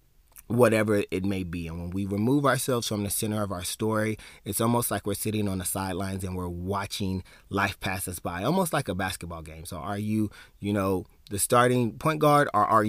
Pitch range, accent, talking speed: 95-125 Hz, American, 215 wpm